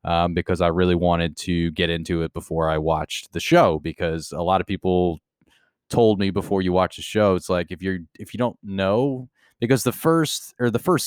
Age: 20-39